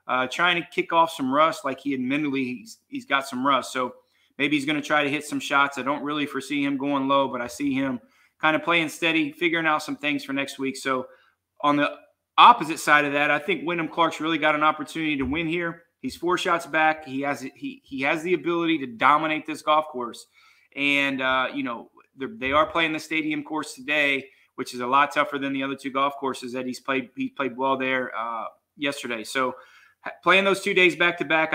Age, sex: 30-49, male